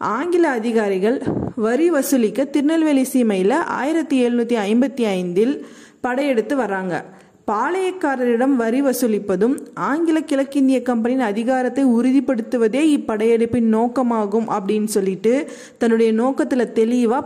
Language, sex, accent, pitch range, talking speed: Tamil, female, native, 215-270 Hz, 95 wpm